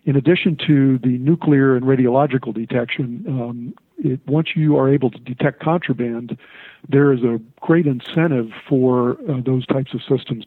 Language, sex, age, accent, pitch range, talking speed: English, male, 50-69, American, 125-150 Hz, 155 wpm